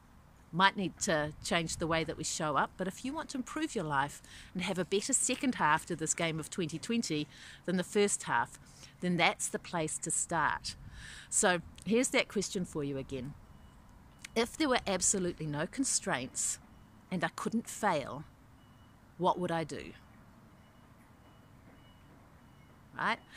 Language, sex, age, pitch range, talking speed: English, female, 40-59, 165-230 Hz, 155 wpm